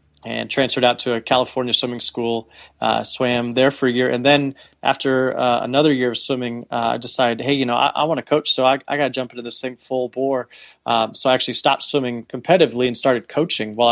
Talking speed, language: 230 wpm, English